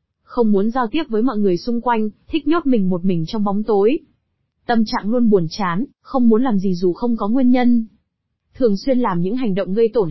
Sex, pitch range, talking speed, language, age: female, 200-255 Hz, 230 wpm, Vietnamese, 20-39